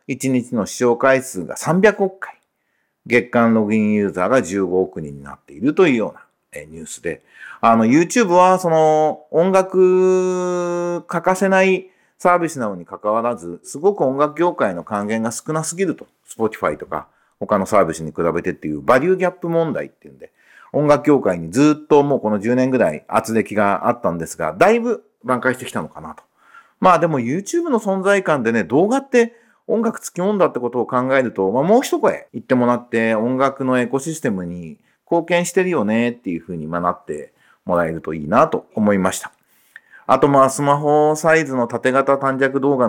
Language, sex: Japanese, male